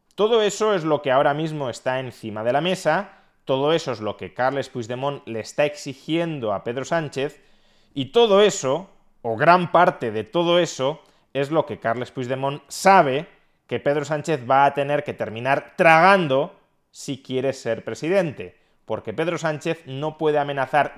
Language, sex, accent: Spanish, male, Spanish